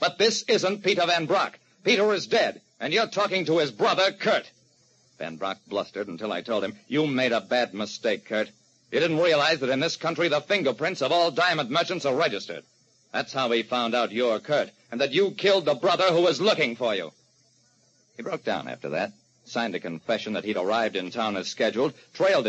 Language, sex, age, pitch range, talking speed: English, male, 50-69, 120-180 Hz, 210 wpm